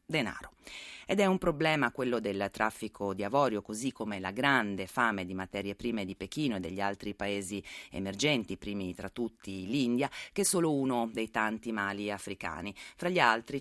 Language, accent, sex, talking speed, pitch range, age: Italian, native, female, 175 wpm, 100-125 Hz, 30-49